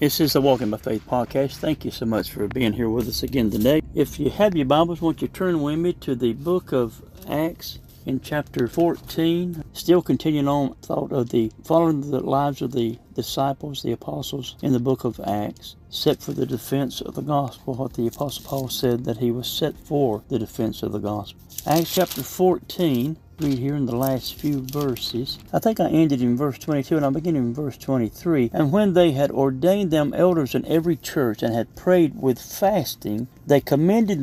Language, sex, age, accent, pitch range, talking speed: English, male, 60-79, American, 115-145 Hz, 205 wpm